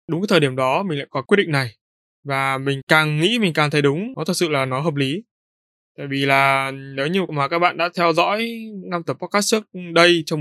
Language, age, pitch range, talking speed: Vietnamese, 20-39, 135-170 Hz, 250 wpm